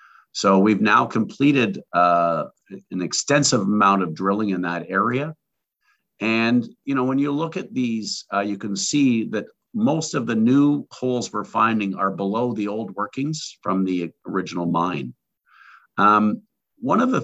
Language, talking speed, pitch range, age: English, 160 wpm, 100-130 Hz, 50-69